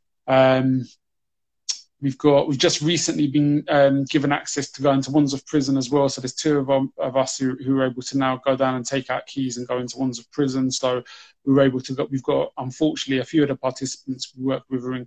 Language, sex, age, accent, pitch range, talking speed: English, male, 20-39, British, 130-140 Hz, 245 wpm